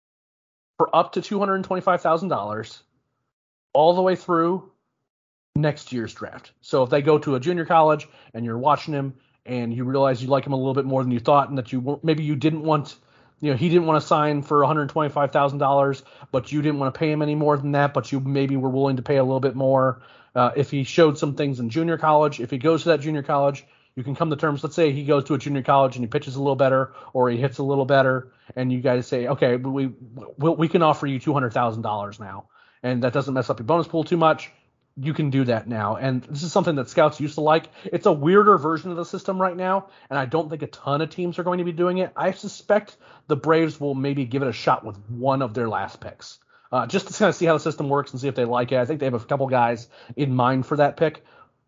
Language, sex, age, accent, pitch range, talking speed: English, male, 30-49, American, 130-160 Hz, 265 wpm